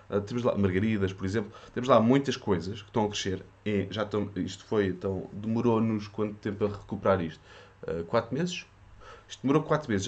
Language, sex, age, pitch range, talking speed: Portuguese, male, 20-39, 100-110 Hz, 195 wpm